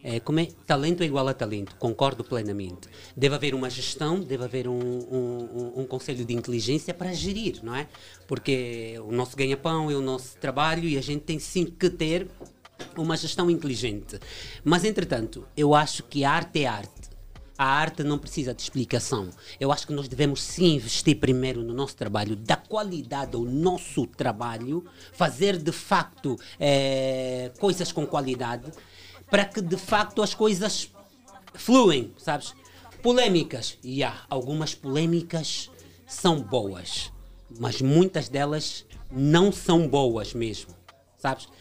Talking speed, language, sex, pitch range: 155 wpm, Portuguese, male, 120-165 Hz